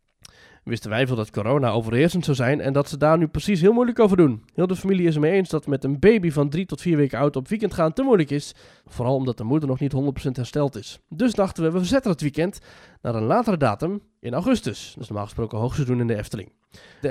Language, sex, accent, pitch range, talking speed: Dutch, male, Dutch, 125-175 Hz, 250 wpm